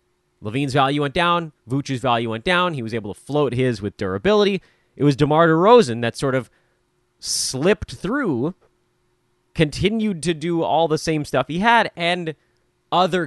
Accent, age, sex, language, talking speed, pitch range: American, 30-49, male, English, 165 wpm, 120-180 Hz